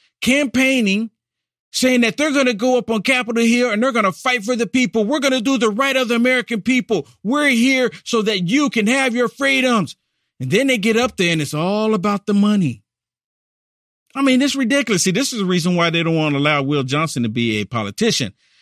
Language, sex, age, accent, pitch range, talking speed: English, male, 50-69, American, 160-245 Hz, 230 wpm